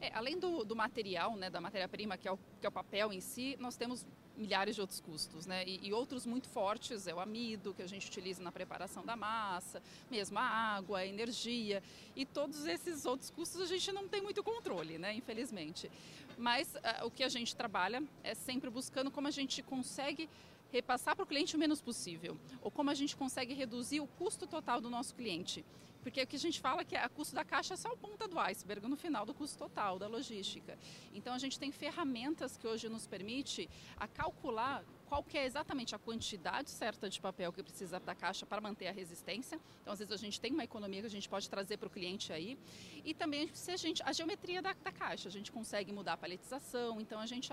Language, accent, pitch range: Portuguese, Brazilian, 200-290 Hz